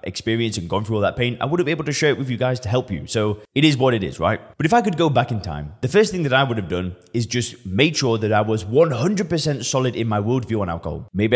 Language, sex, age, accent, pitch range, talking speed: English, male, 20-39, British, 100-130 Hz, 310 wpm